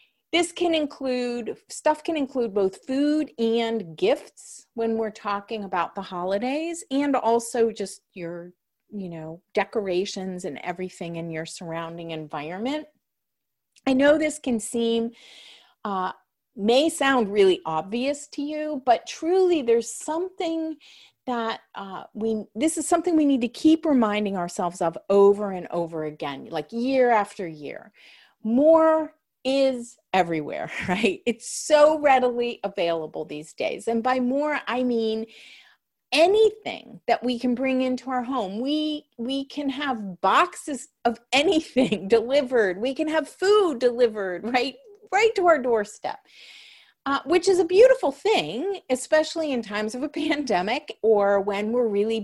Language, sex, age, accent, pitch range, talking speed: English, female, 40-59, American, 205-290 Hz, 140 wpm